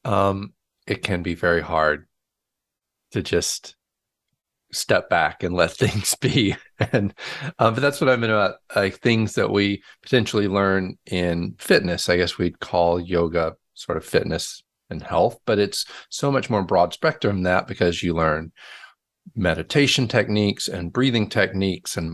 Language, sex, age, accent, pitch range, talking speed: English, male, 40-59, American, 90-105 Hz, 160 wpm